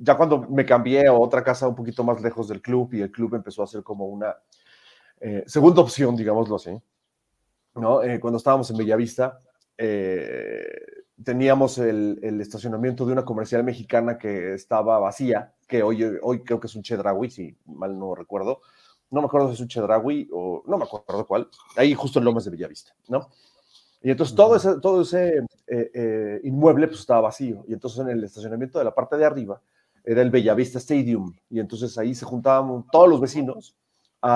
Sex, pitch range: male, 115-140 Hz